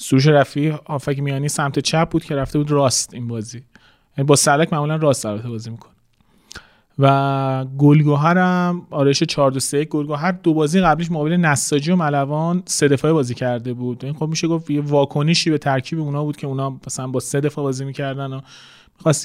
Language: Persian